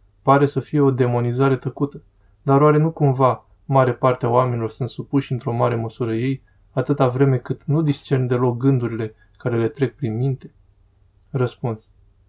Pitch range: 115-140 Hz